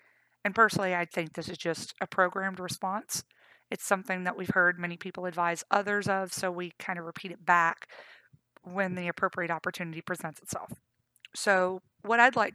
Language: English